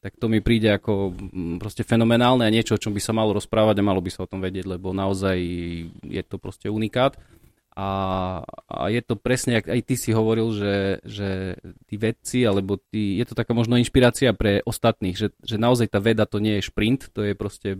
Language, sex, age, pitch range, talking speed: Slovak, male, 20-39, 105-120 Hz, 210 wpm